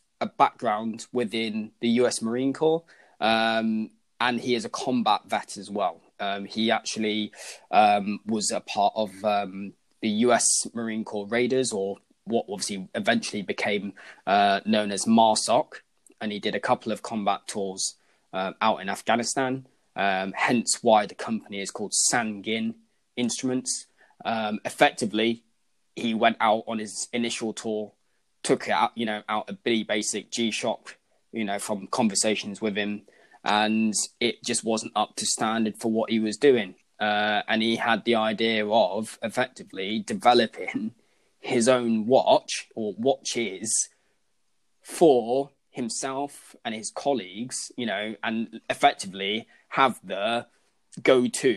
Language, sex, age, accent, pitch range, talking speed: English, male, 20-39, British, 105-115 Hz, 140 wpm